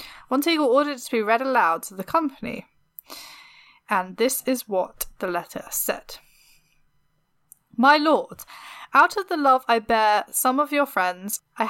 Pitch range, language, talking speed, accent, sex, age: 200-255 Hz, English, 155 wpm, British, female, 10-29